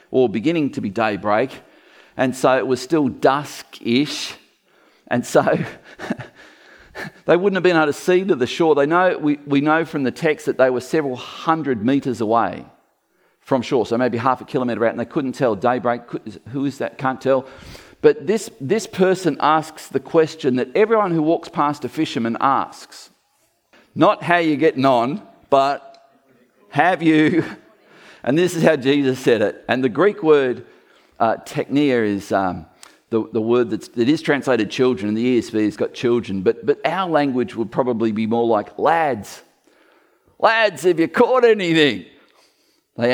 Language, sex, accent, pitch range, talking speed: English, male, Australian, 125-175 Hz, 170 wpm